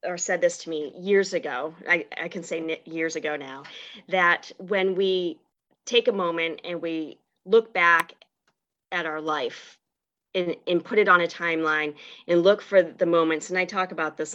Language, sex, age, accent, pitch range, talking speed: English, female, 40-59, American, 165-195 Hz, 185 wpm